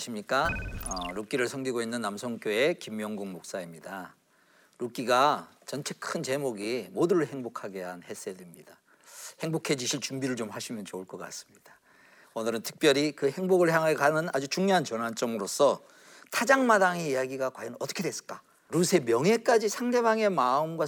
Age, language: 40-59, Korean